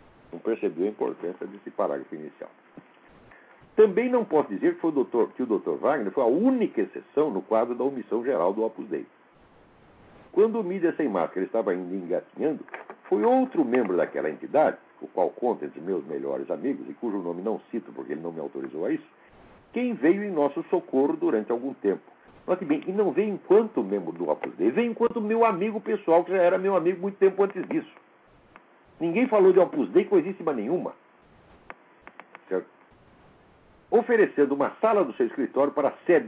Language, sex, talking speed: Portuguese, male, 180 wpm